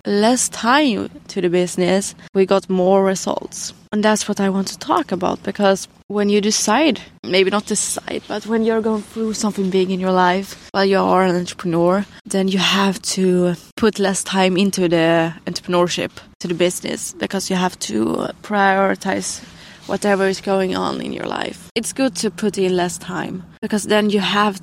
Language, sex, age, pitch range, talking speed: English, female, 20-39, 185-205 Hz, 185 wpm